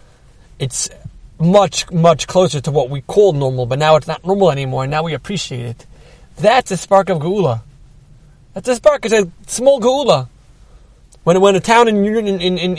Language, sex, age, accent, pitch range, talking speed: English, male, 30-49, American, 150-195 Hz, 185 wpm